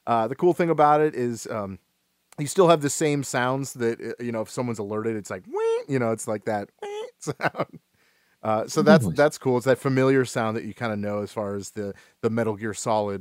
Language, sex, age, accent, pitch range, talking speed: English, male, 30-49, American, 110-145 Hz, 230 wpm